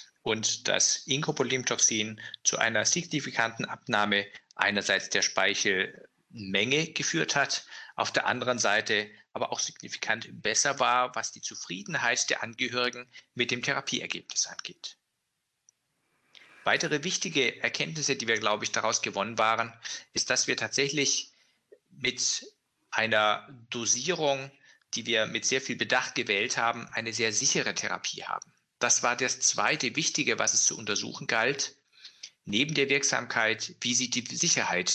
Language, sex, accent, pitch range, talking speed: English, male, German, 110-135 Hz, 130 wpm